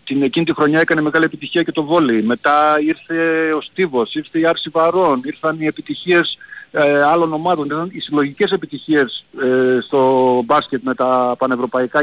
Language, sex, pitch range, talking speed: Greek, male, 140-185 Hz, 170 wpm